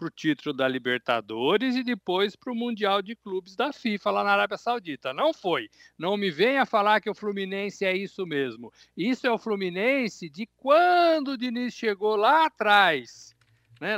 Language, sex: Portuguese, male